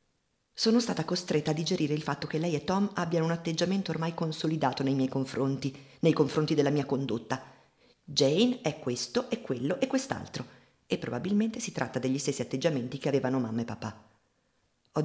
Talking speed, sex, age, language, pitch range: 175 wpm, female, 50-69, Italian, 130-170 Hz